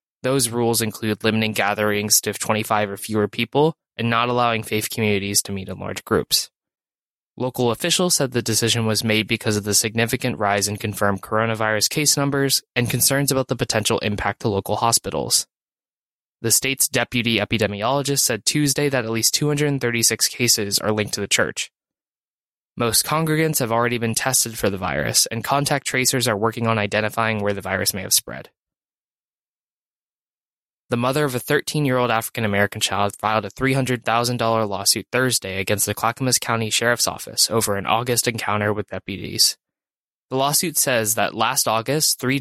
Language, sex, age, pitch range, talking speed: English, male, 20-39, 105-130 Hz, 165 wpm